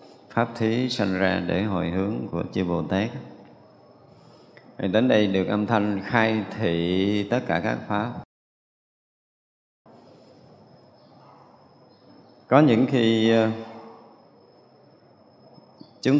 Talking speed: 95 wpm